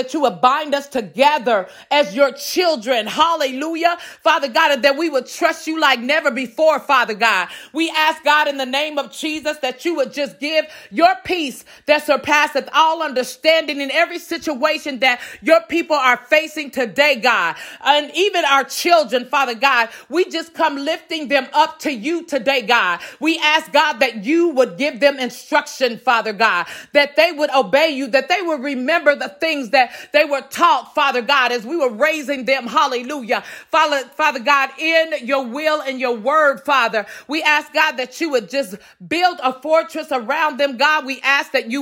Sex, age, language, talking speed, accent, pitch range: female, 30-49, English, 185 wpm, American, 265-315 Hz